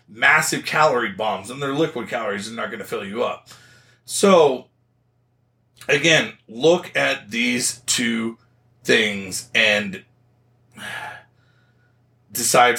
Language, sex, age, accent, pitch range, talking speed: English, male, 40-59, American, 105-125 Hz, 110 wpm